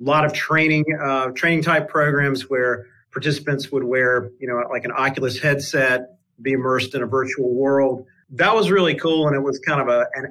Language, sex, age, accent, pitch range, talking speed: English, male, 40-59, American, 125-150 Hz, 200 wpm